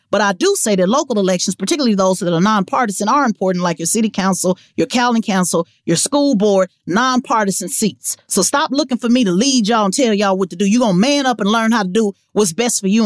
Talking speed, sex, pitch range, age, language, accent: 250 wpm, female, 205-295 Hz, 30-49, English, American